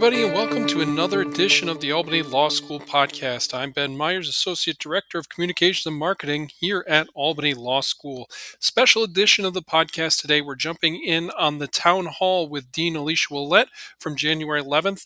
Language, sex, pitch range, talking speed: English, male, 145-175 Hz, 185 wpm